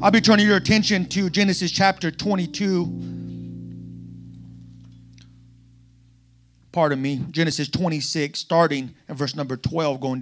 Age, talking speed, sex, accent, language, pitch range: 30-49, 110 wpm, male, American, English, 145-195 Hz